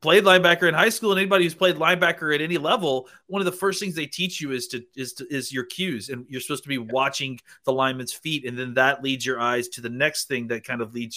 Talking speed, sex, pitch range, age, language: 275 wpm, male, 120-150 Hz, 30-49, English